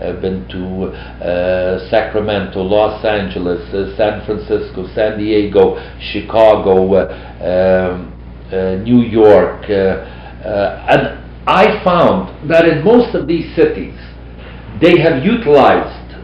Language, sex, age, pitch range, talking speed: English, male, 50-69, 90-135 Hz, 120 wpm